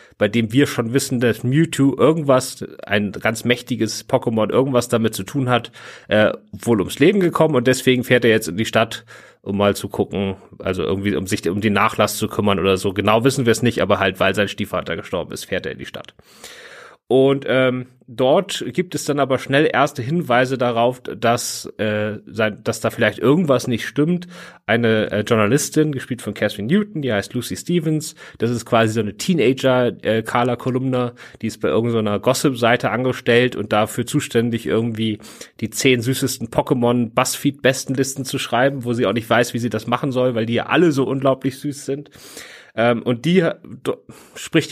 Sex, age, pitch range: male, 40-59, 110-135 Hz